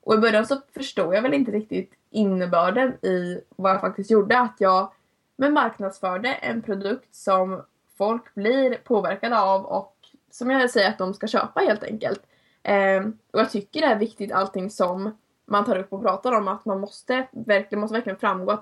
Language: Swedish